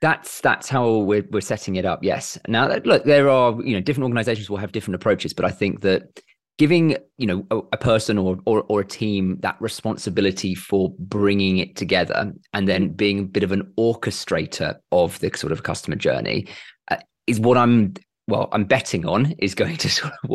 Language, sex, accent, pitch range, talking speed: English, male, British, 95-115 Hz, 200 wpm